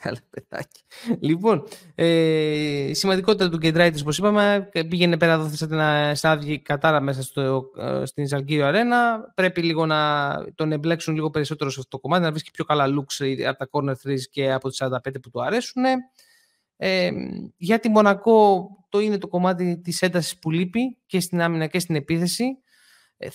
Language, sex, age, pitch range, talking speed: Greek, male, 20-39, 150-200 Hz, 175 wpm